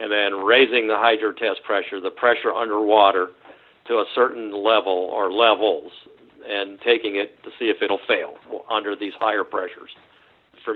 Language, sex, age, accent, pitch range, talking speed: English, male, 50-69, American, 105-145 Hz, 160 wpm